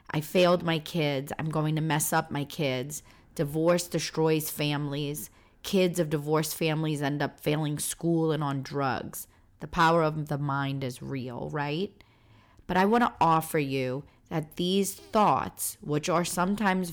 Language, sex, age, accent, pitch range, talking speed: English, female, 30-49, American, 145-185 Hz, 155 wpm